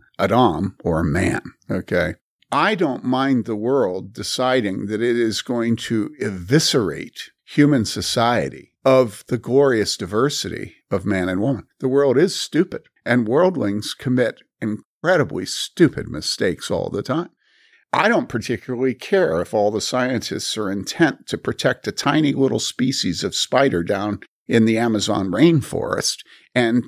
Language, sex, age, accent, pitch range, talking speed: English, male, 50-69, American, 105-130 Hz, 140 wpm